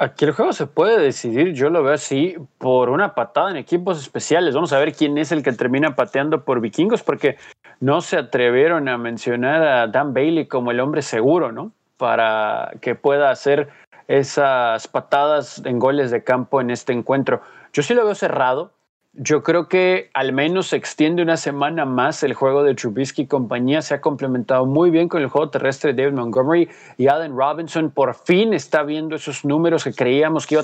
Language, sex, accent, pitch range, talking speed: Spanish, male, Mexican, 130-160 Hz, 195 wpm